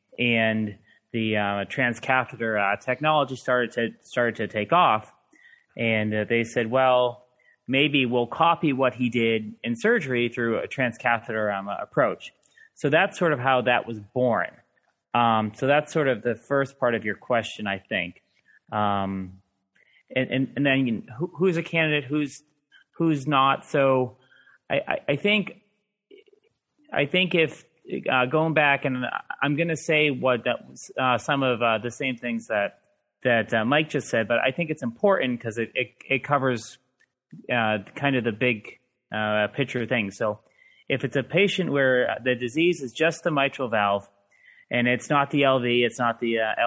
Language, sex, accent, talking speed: English, male, American, 175 wpm